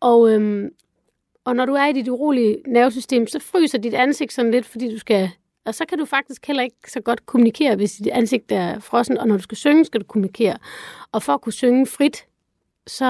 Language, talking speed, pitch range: Danish, 225 wpm, 210-255 Hz